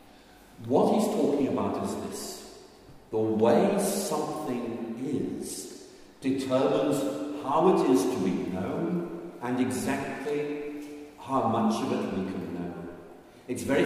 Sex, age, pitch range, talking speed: male, 60-79, 115-185 Hz, 120 wpm